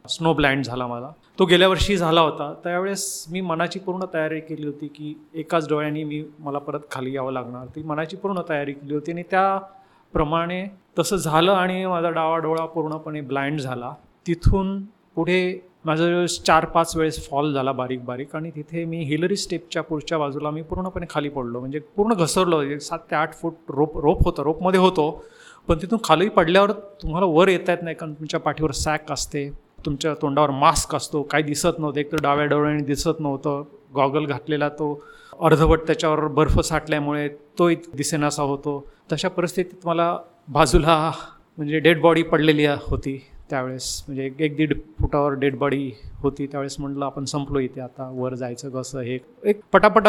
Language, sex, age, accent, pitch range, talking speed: Marathi, male, 30-49, native, 145-170 Hz, 170 wpm